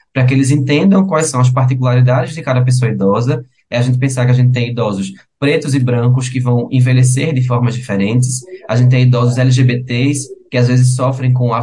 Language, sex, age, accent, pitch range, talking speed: Portuguese, male, 20-39, Brazilian, 125-145 Hz, 210 wpm